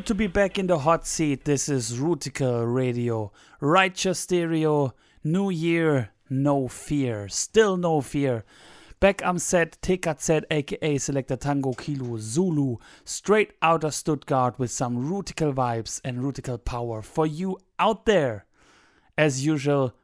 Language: English